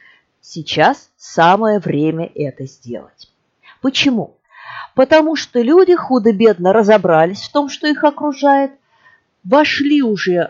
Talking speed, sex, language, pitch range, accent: 105 wpm, female, Russian, 165-255 Hz, native